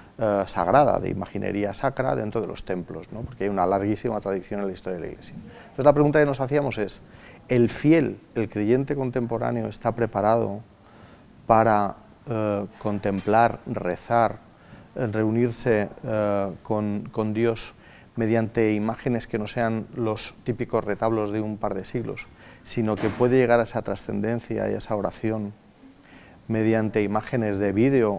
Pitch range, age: 105-120 Hz, 40-59